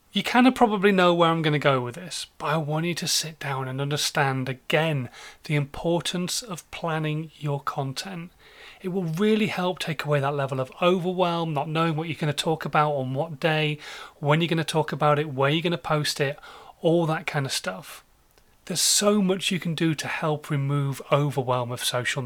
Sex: male